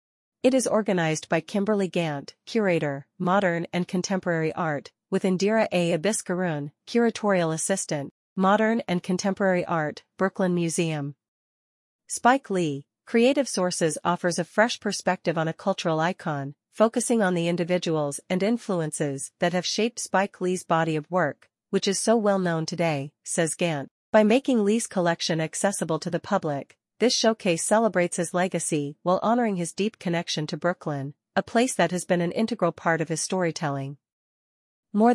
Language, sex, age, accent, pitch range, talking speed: English, female, 40-59, American, 165-205 Hz, 150 wpm